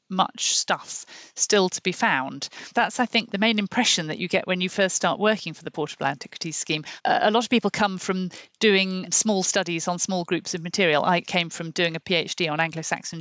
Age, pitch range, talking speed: 50-69, 165-210 Hz, 215 wpm